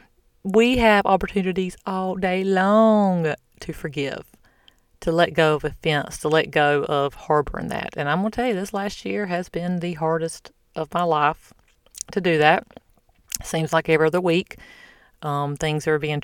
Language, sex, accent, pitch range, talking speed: English, female, American, 150-180 Hz, 175 wpm